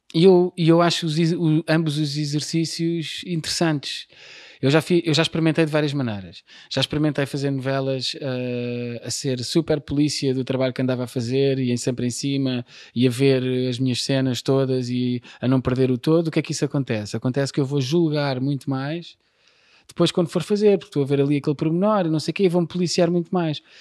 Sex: male